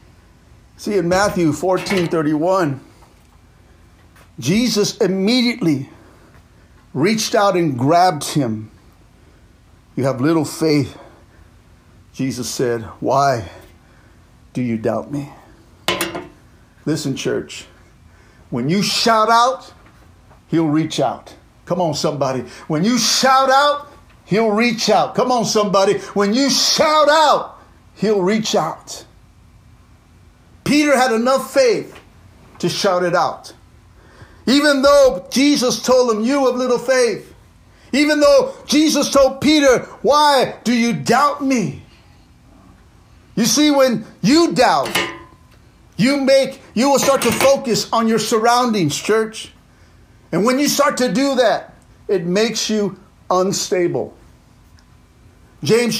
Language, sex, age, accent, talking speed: English, male, 50-69, American, 115 wpm